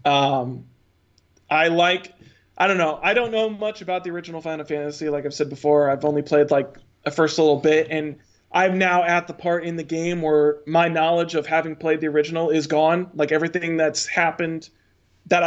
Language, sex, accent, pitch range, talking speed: English, male, American, 150-175 Hz, 200 wpm